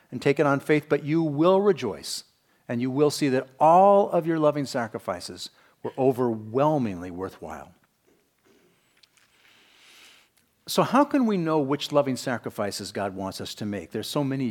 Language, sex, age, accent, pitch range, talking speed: English, male, 50-69, American, 125-175 Hz, 155 wpm